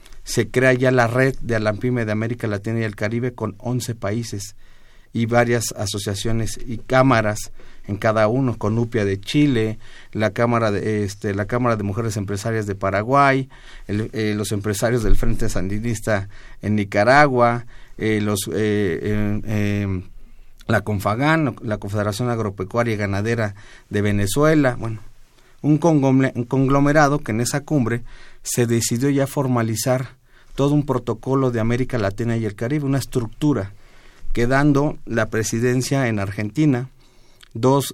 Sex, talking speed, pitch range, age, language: male, 140 wpm, 110-130 Hz, 50-69, Spanish